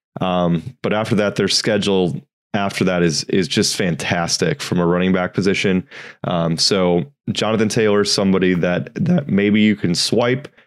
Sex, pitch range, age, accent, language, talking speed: male, 85-105 Hz, 20-39, American, English, 165 wpm